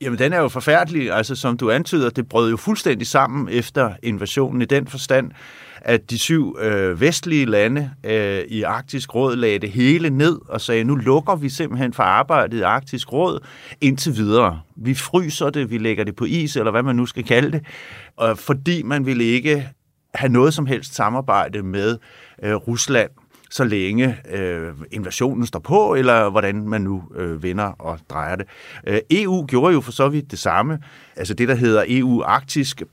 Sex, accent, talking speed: male, native, 180 wpm